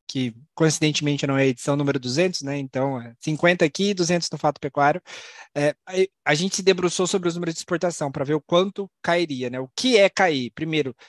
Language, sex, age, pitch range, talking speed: Portuguese, male, 20-39, 145-180 Hz, 195 wpm